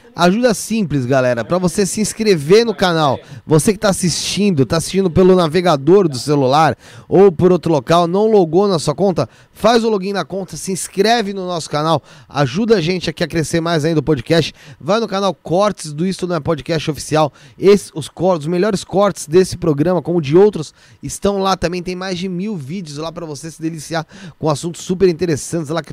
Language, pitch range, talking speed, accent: Portuguese, 155-195 Hz, 205 wpm, Brazilian